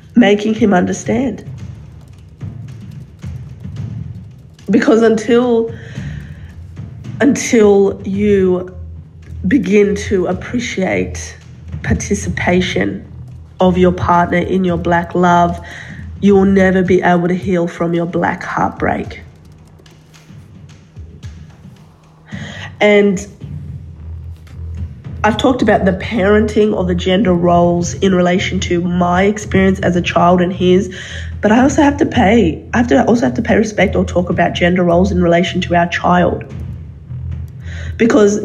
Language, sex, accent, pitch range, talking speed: English, female, Australian, 170-200 Hz, 115 wpm